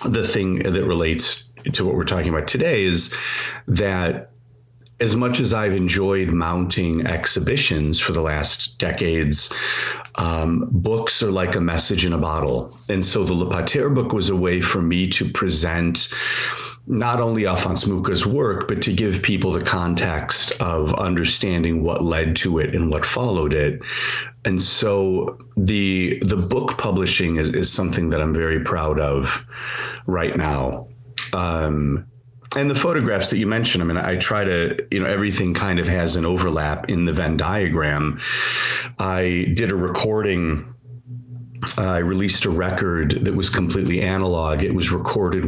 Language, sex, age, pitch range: English, male, 40-59, 85-105 Hz